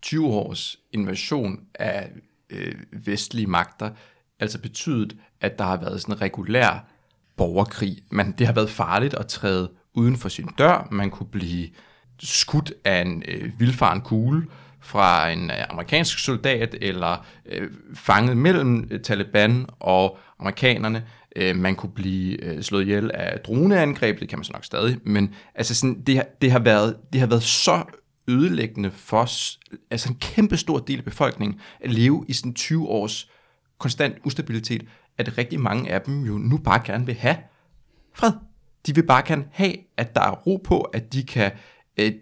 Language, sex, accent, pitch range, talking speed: Danish, male, native, 105-145 Hz, 170 wpm